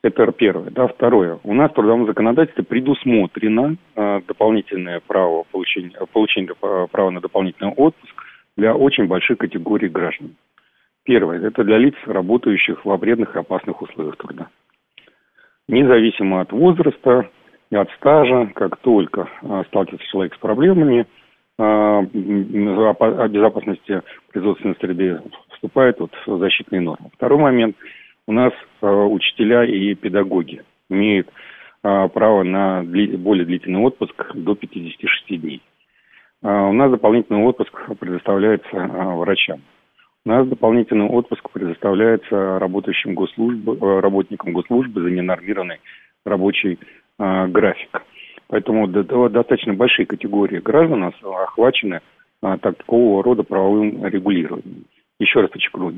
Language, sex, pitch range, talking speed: Russian, male, 95-115 Hz, 120 wpm